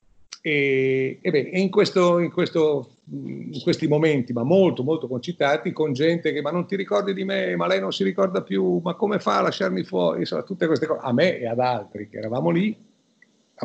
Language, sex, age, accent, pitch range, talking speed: Italian, male, 50-69, native, 125-175 Hz, 210 wpm